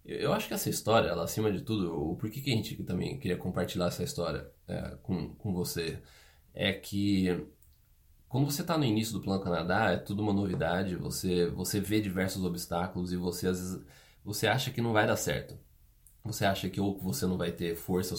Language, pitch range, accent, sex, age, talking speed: Portuguese, 90-115 Hz, Brazilian, male, 20-39, 210 wpm